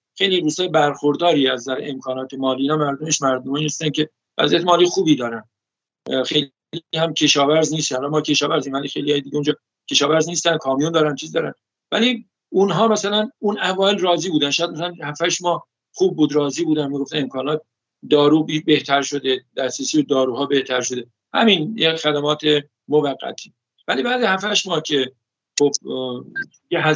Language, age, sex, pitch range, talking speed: Persian, 50-69, male, 140-175 Hz, 150 wpm